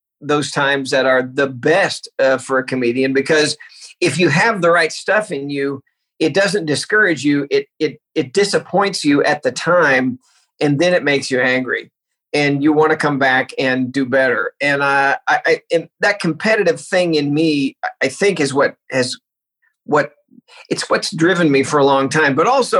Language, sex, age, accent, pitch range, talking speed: English, male, 50-69, American, 140-190 Hz, 190 wpm